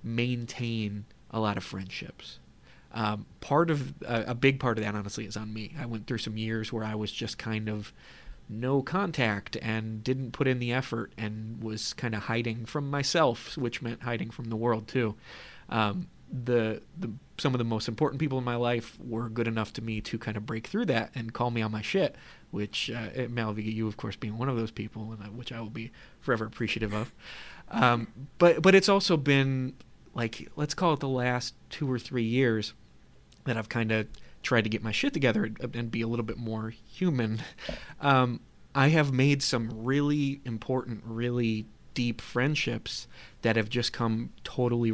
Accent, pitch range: American, 110-125 Hz